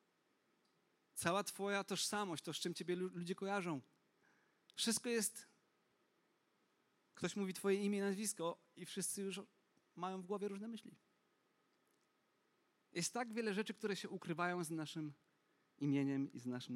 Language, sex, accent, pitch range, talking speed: Polish, male, native, 160-205 Hz, 135 wpm